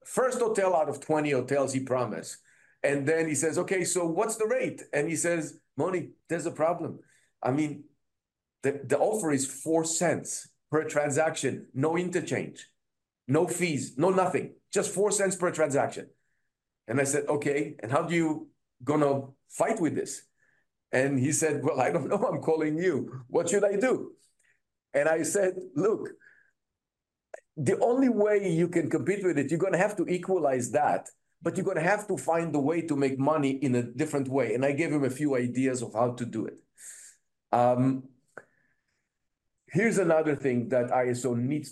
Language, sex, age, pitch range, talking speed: English, male, 50-69, 130-180 Hz, 180 wpm